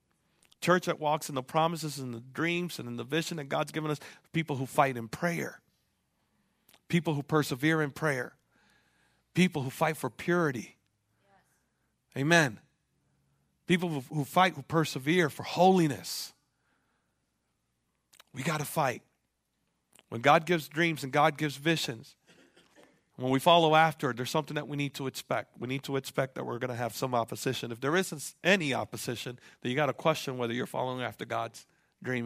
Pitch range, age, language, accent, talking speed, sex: 130-175 Hz, 40-59, English, American, 165 wpm, male